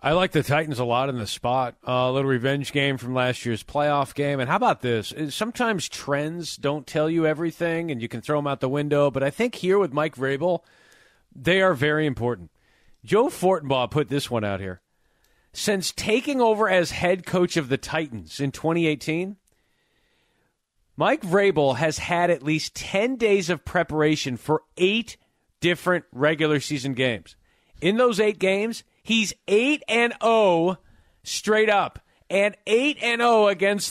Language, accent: English, American